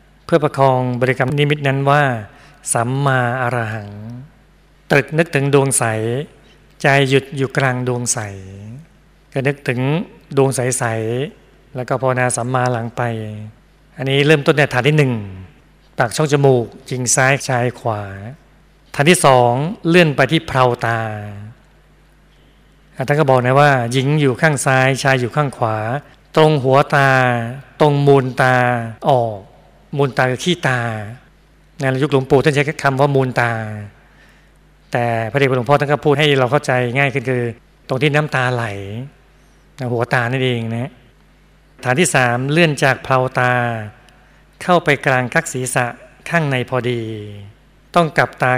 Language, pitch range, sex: Thai, 120-145 Hz, male